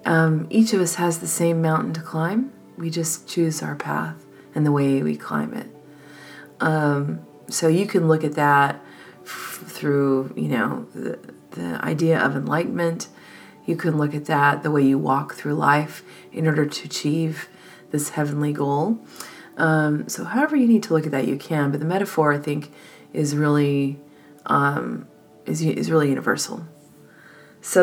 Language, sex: English, female